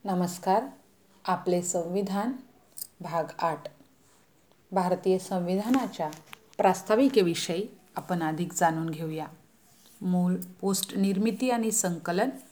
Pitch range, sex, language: 175-225 Hz, female, Hindi